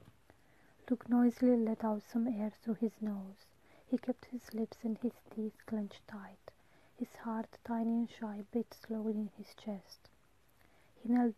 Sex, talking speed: female, 160 wpm